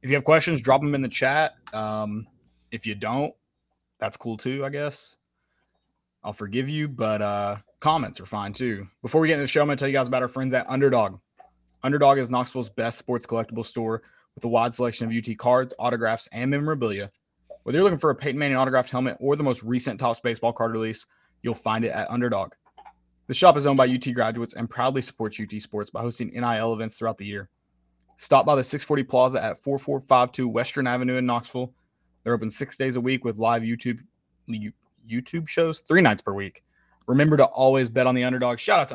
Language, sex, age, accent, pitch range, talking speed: English, male, 20-39, American, 105-130 Hz, 215 wpm